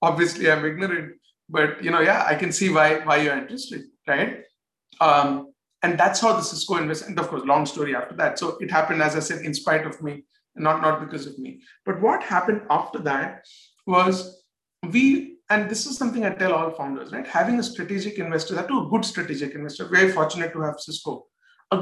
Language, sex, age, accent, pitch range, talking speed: English, male, 50-69, Indian, 160-215 Hz, 205 wpm